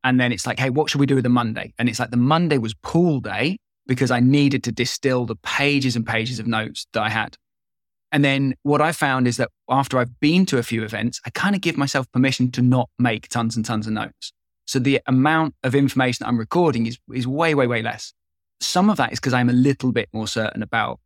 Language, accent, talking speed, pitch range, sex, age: English, British, 250 wpm, 120-140 Hz, male, 20-39